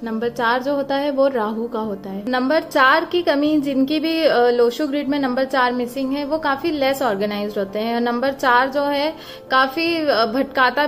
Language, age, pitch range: Hindi, 20-39, 235-275 Hz